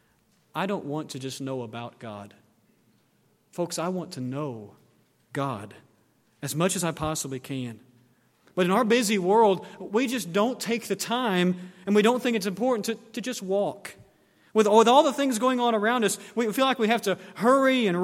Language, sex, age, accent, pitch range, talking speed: English, male, 40-59, American, 150-220 Hz, 195 wpm